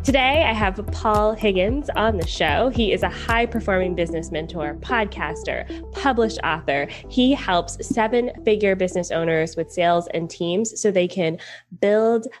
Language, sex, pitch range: English, female, 180-240 Hz